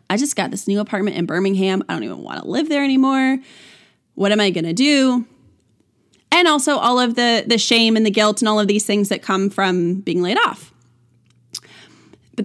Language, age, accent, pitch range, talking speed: English, 20-39, American, 180-245 Hz, 210 wpm